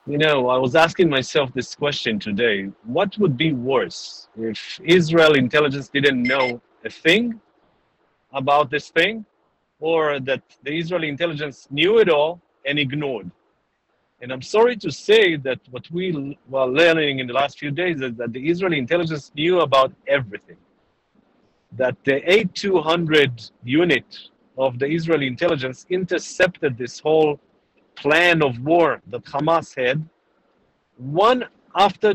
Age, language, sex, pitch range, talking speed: 50-69, English, male, 140-190 Hz, 140 wpm